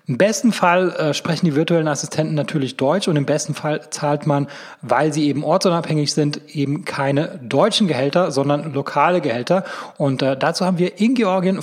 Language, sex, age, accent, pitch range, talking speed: German, male, 30-49, German, 140-175 Hz, 180 wpm